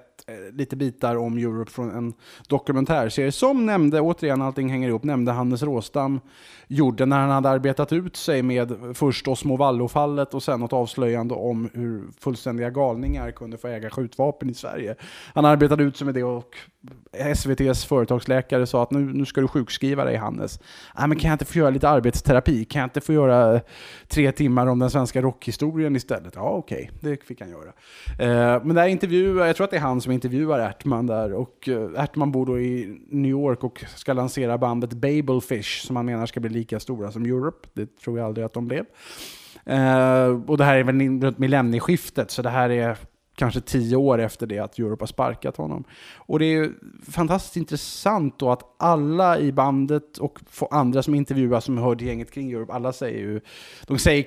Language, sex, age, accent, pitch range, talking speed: Swedish, male, 20-39, Norwegian, 120-140 Hz, 190 wpm